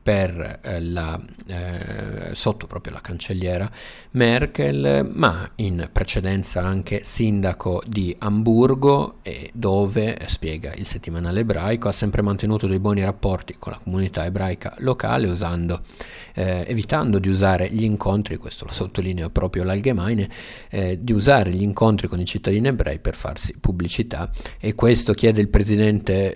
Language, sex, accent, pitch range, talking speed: Italian, male, native, 90-110 Hz, 140 wpm